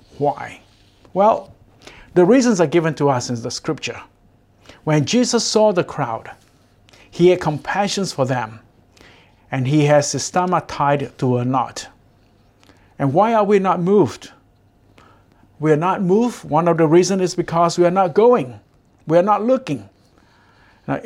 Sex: male